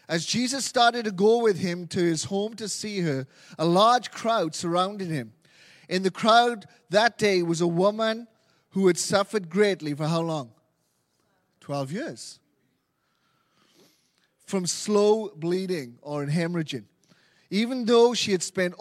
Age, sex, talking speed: 30-49, male, 145 wpm